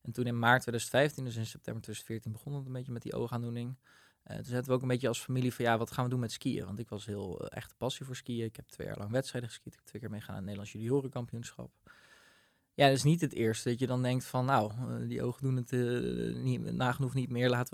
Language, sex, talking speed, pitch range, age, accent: Dutch, male, 270 wpm, 115-135 Hz, 20-39, Dutch